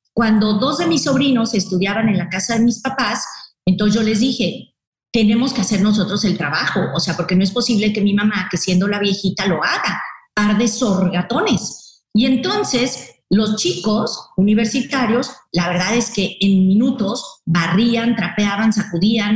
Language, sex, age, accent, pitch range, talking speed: Spanish, female, 40-59, Mexican, 190-240 Hz, 165 wpm